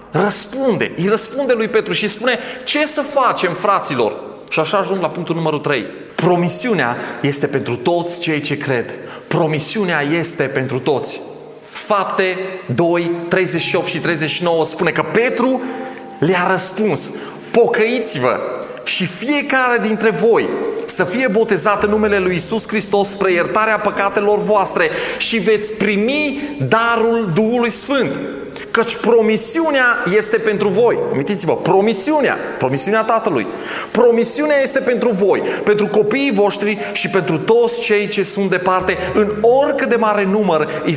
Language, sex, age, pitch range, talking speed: Romanian, male, 30-49, 185-245 Hz, 135 wpm